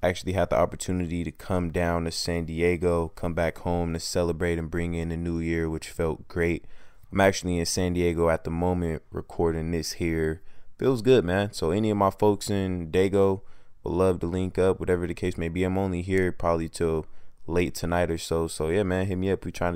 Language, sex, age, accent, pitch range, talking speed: English, male, 20-39, American, 85-95 Hz, 220 wpm